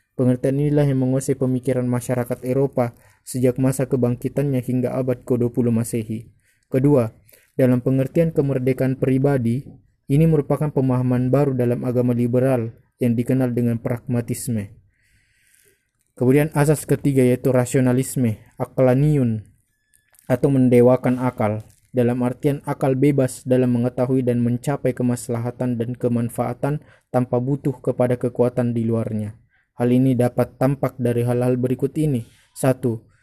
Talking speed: 115 wpm